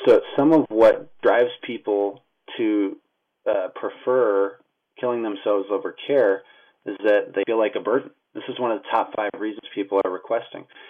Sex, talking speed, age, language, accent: male, 170 wpm, 30-49, English, American